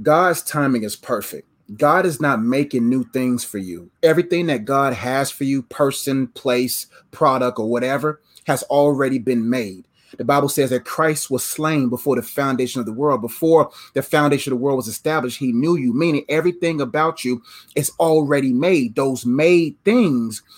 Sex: male